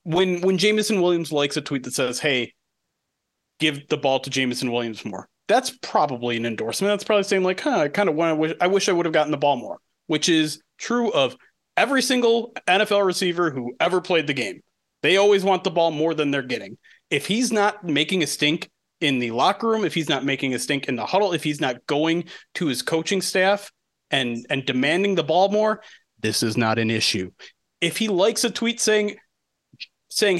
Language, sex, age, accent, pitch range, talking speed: English, male, 30-49, American, 135-195 Hz, 215 wpm